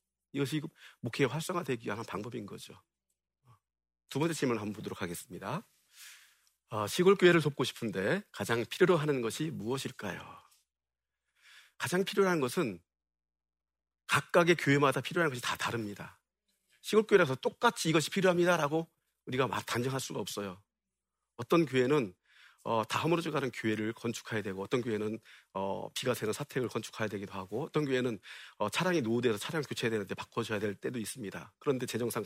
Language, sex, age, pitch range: Korean, male, 40-59, 110-165 Hz